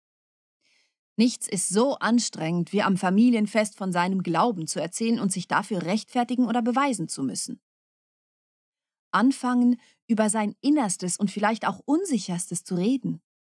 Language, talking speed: German, 135 wpm